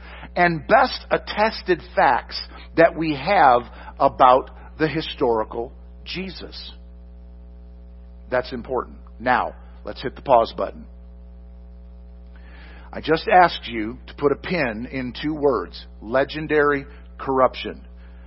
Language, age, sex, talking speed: English, 50-69, male, 105 wpm